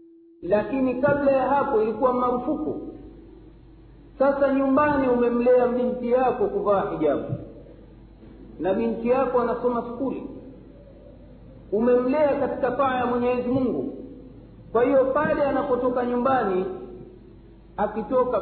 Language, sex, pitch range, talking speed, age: Swahili, male, 190-270 Hz, 100 wpm, 50-69